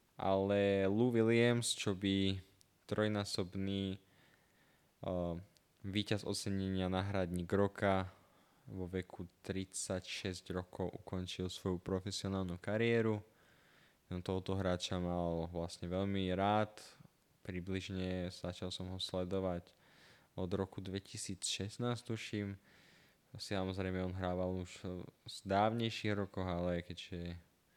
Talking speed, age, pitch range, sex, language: 100 wpm, 20-39, 90-105 Hz, male, Slovak